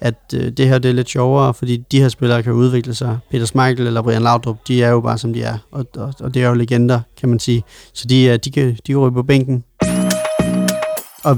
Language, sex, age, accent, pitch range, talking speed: Danish, male, 30-49, native, 120-140 Hz, 245 wpm